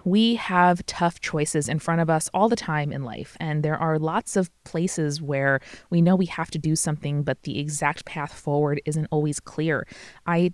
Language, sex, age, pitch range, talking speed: English, female, 20-39, 150-190 Hz, 205 wpm